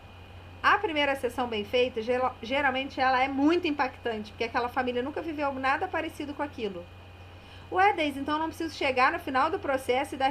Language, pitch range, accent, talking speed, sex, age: Portuguese, 230-295 Hz, Brazilian, 185 wpm, female, 30-49